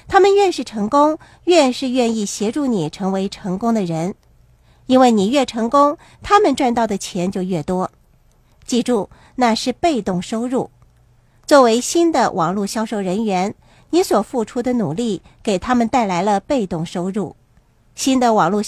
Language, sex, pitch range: Chinese, female, 195-260 Hz